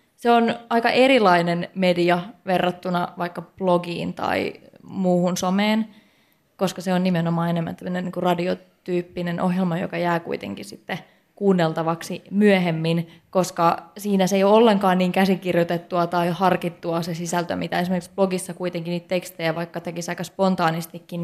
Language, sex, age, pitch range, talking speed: Finnish, female, 20-39, 175-195 Hz, 135 wpm